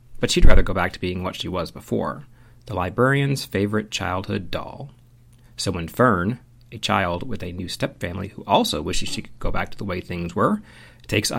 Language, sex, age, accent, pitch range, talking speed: English, male, 40-59, American, 105-130 Hz, 200 wpm